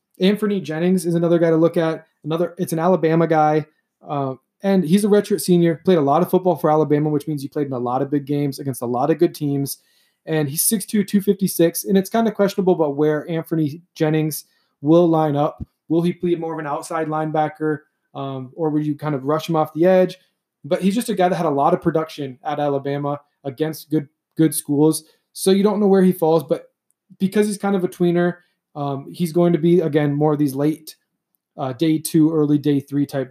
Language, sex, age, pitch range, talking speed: English, male, 20-39, 145-180 Hz, 225 wpm